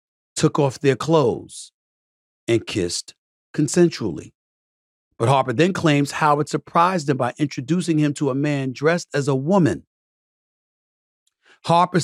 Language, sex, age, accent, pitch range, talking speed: English, male, 40-59, American, 115-160 Hz, 125 wpm